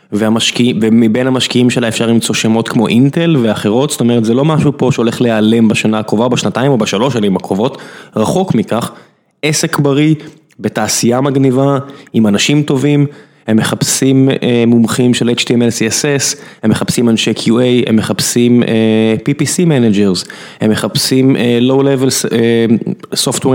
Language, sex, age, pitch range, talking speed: Hebrew, male, 20-39, 115-150 Hz, 145 wpm